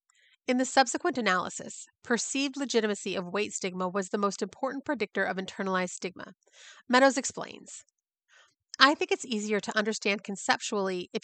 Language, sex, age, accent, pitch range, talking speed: English, female, 30-49, American, 200-255 Hz, 145 wpm